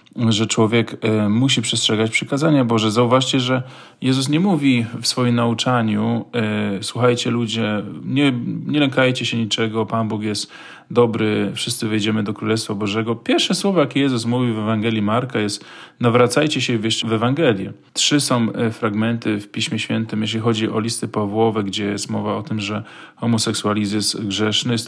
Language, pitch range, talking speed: Polish, 110-125 Hz, 155 wpm